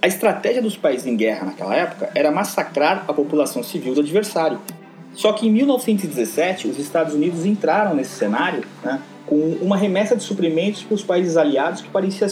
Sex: male